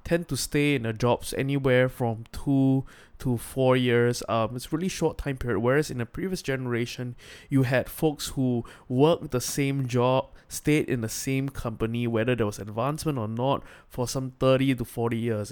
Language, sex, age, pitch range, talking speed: English, male, 20-39, 115-140 Hz, 190 wpm